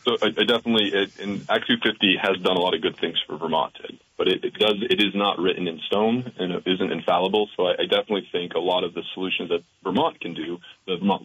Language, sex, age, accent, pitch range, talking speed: English, male, 30-49, American, 90-110 Hz, 255 wpm